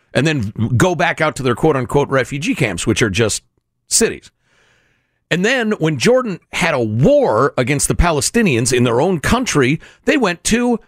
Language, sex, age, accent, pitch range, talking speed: English, male, 50-69, American, 135-220 Hz, 170 wpm